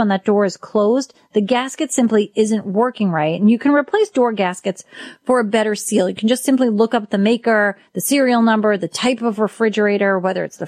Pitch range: 185-250 Hz